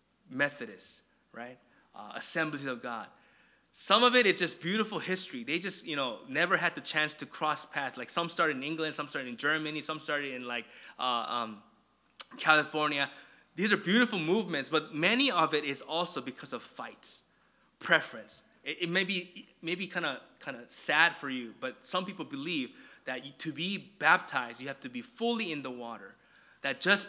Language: English